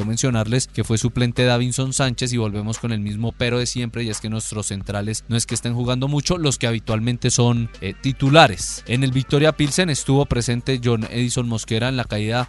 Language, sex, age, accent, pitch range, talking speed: Spanish, male, 20-39, Colombian, 110-130 Hz, 205 wpm